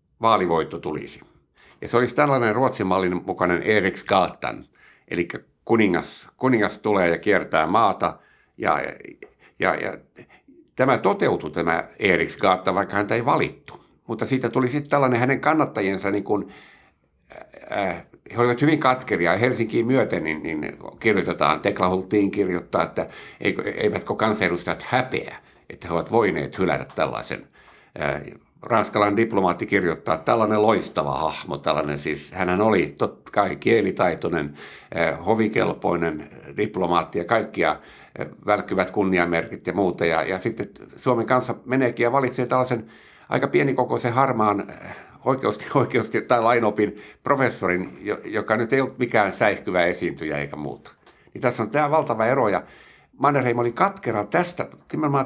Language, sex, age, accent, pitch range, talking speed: Finnish, male, 60-79, native, 95-130 Hz, 130 wpm